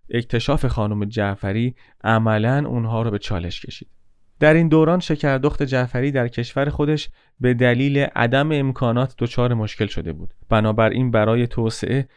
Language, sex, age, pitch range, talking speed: Persian, male, 30-49, 110-140 Hz, 140 wpm